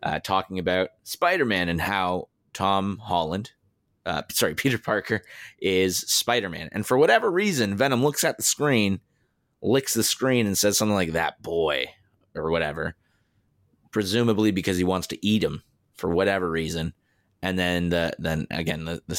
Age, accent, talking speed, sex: 30-49, American, 160 wpm, male